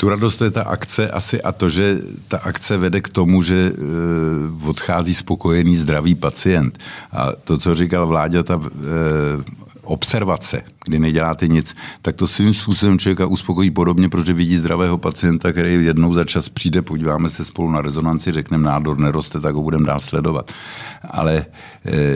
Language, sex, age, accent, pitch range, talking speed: Czech, male, 50-69, native, 80-90 Hz, 170 wpm